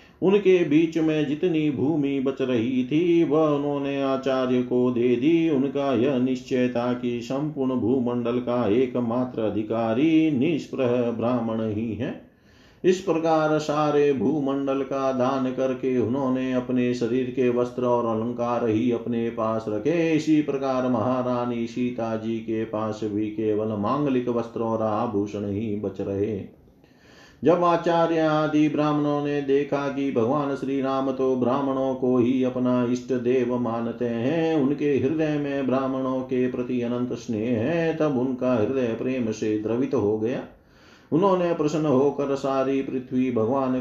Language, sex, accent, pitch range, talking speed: Hindi, male, native, 120-140 Hz, 140 wpm